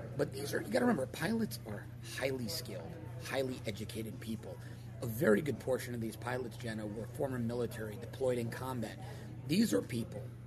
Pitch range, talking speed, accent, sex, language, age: 115-135 Hz, 180 wpm, American, male, English, 30-49